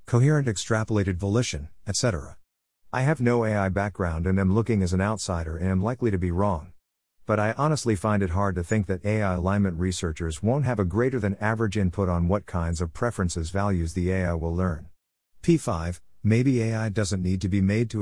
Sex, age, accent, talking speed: male, 50-69, American, 195 wpm